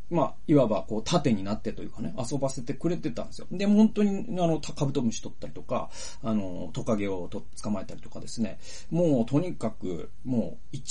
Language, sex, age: Japanese, male, 40-59